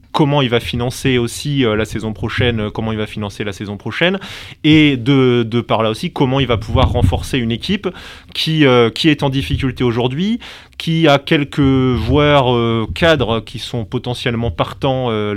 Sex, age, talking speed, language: male, 20-39, 180 wpm, French